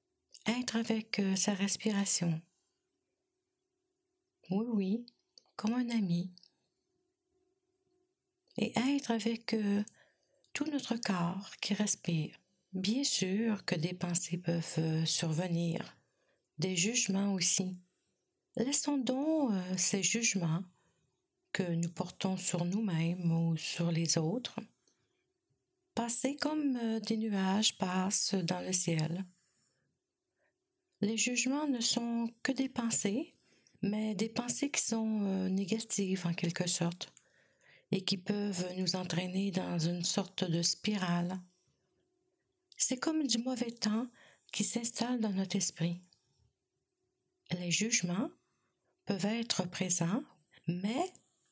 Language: French